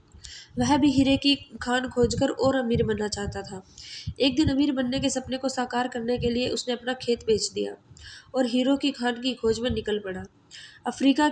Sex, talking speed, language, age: female, 195 wpm, Hindi, 20-39